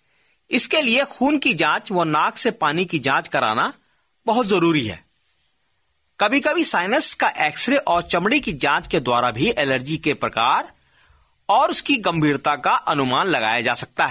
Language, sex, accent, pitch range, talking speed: Hindi, male, native, 150-235 Hz, 160 wpm